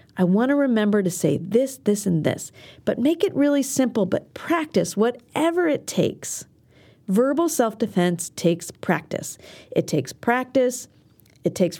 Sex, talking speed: female, 145 wpm